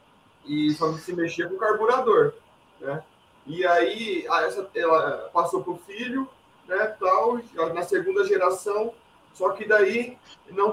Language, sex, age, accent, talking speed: Portuguese, male, 20-39, Brazilian, 140 wpm